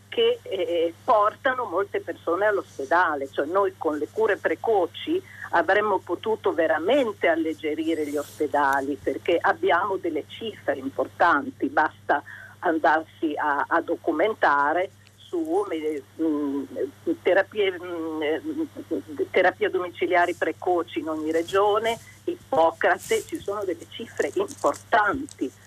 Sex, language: female, Italian